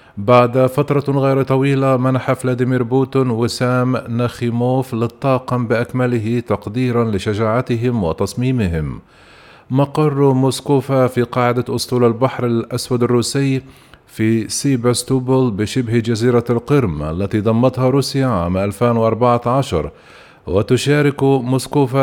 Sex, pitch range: male, 115-130 Hz